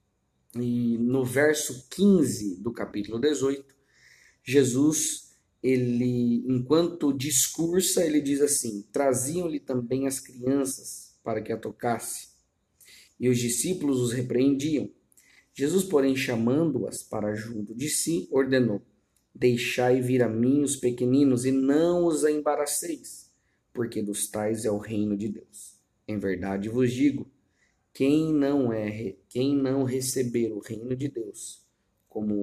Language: Portuguese